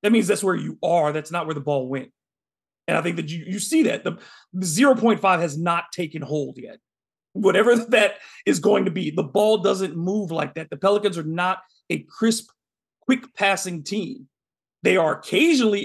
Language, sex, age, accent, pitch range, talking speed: English, male, 40-59, American, 170-225 Hz, 195 wpm